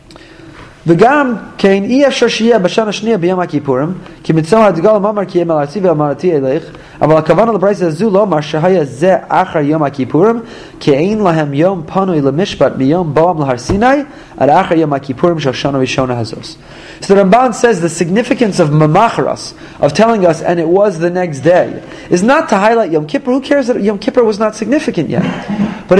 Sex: male